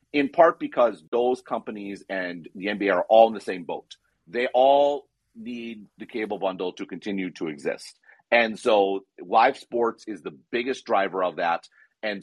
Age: 40-59